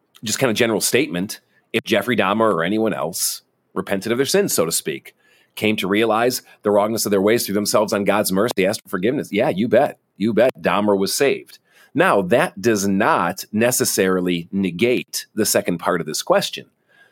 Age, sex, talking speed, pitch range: 40-59, male, 190 wpm, 90-115 Hz